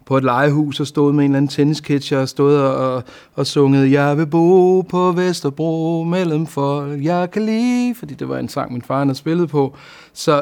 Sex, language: male, Danish